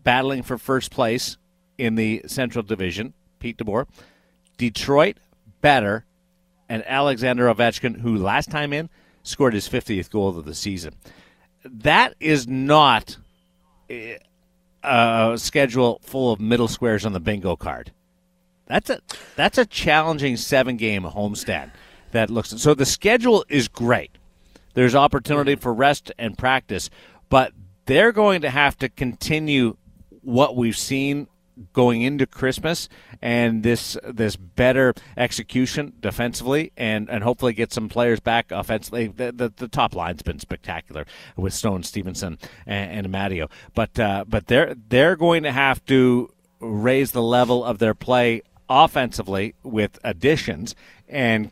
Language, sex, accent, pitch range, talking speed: English, male, American, 110-135 Hz, 135 wpm